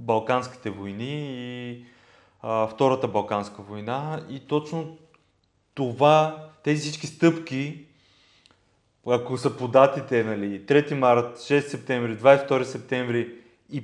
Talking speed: 100 wpm